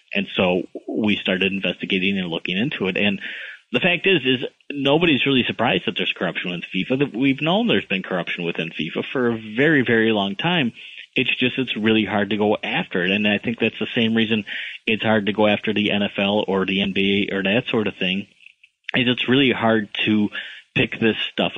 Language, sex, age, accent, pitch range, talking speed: English, male, 30-49, American, 95-115 Hz, 210 wpm